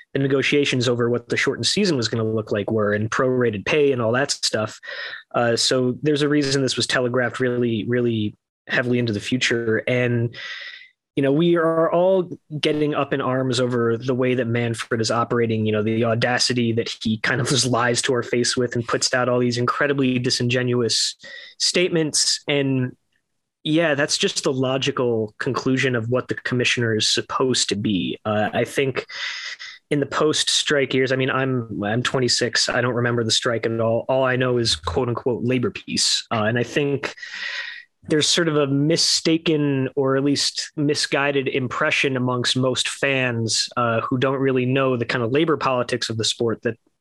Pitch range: 120-145 Hz